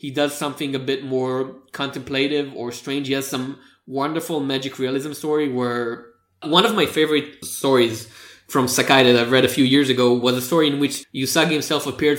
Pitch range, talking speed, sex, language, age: 130-160 Hz, 190 wpm, male, English, 20-39